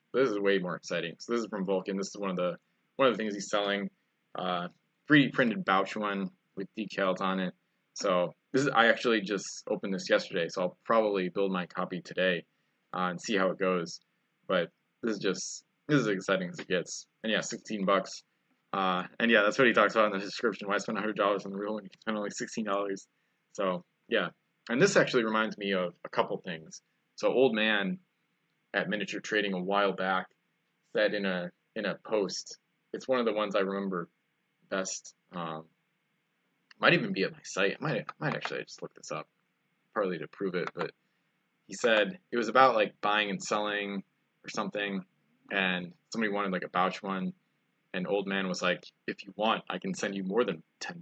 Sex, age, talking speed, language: male, 20-39, 215 wpm, English